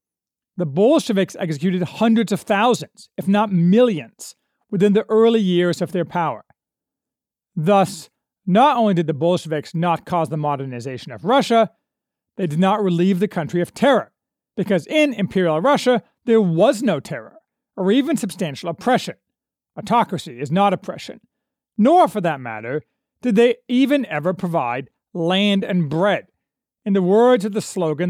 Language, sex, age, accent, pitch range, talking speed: English, male, 40-59, American, 170-225 Hz, 150 wpm